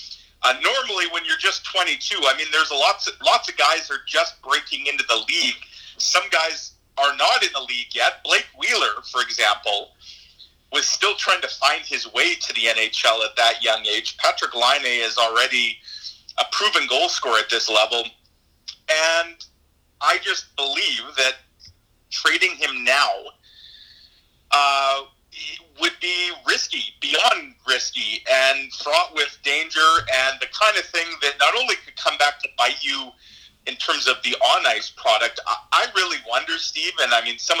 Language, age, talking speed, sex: English, 40-59, 170 wpm, male